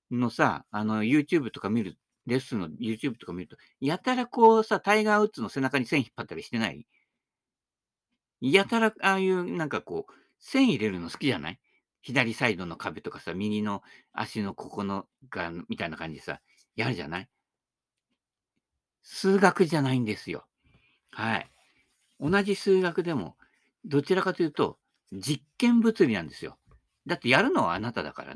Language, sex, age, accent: Japanese, male, 50-69, native